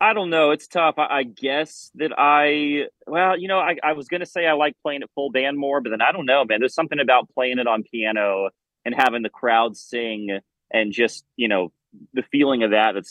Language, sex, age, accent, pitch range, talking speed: English, male, 30-49, American, 110-140 Hz, 240 wpm